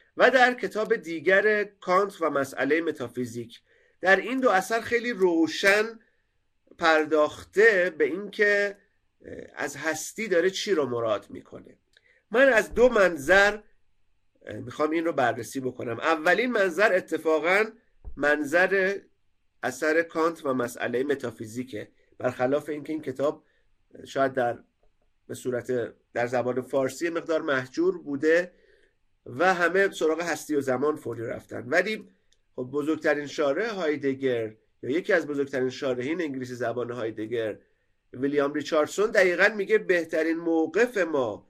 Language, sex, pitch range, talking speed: Persian, male, 135-205 Hz, 120 wpm